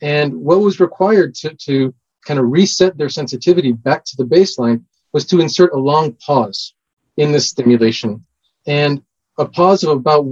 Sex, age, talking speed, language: male, 30-49, 170 wpm, English